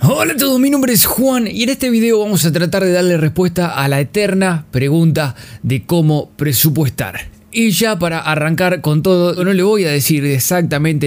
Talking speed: 195 wpm